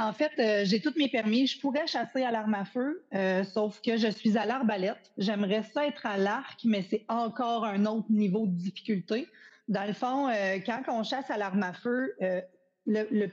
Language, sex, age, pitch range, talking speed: French, female, 30-49, 195-250 Hz, 210 wpm